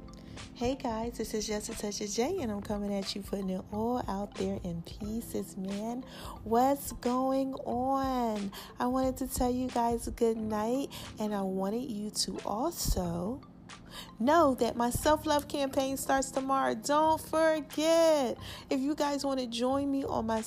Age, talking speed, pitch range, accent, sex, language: 40-59, 165 wpm, 200-255 Hz, American, female, English